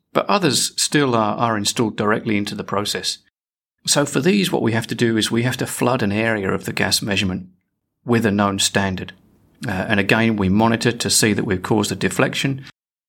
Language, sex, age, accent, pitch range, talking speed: English, male, 40-59, British, 100-120 Hz, 205 wpm